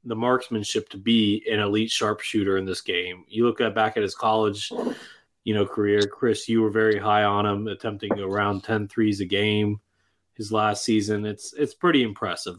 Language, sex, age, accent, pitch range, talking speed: English, male, 30-49, American, 105-130 Hz, 190 wpm